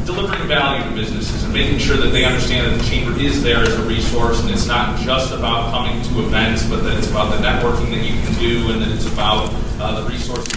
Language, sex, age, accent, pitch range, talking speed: English, male, 30-49, American, 110-125 Hz, 245 wpm